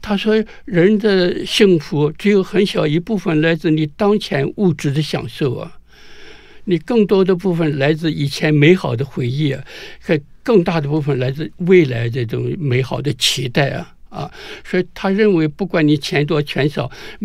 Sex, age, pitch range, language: male, 60-79, 145-180 Hz, Chinese